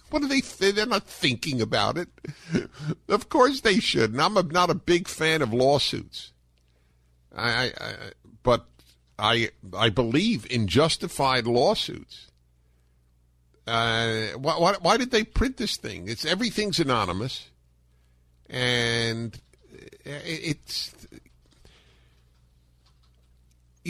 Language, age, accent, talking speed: English, 50-69, American, 115 wpm